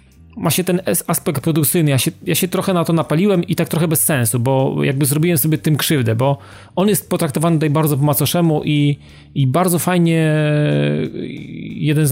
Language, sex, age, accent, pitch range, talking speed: Polish, male, 30-49, native, 130-155 Hz, 185 wpm